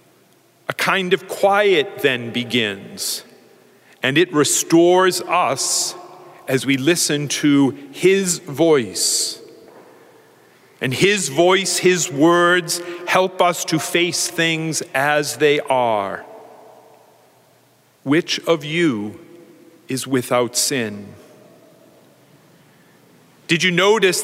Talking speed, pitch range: 90 wpm, 140-180 Hz